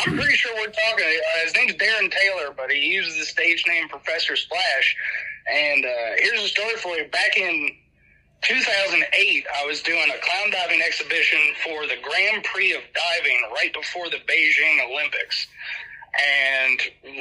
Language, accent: English, American